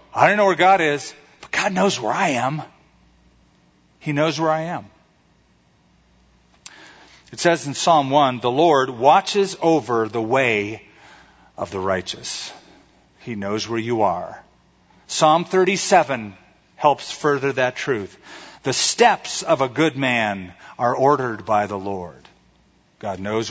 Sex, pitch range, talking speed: male, 115-165 Hz, 140 wpm